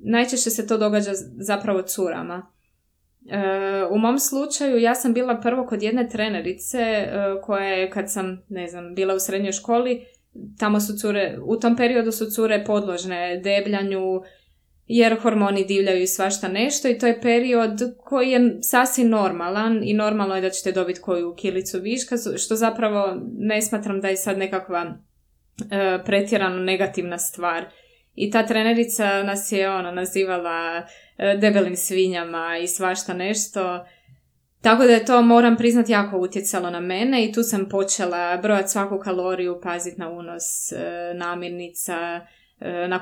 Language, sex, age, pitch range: Croatian, female, 20-39, 180-225 Hz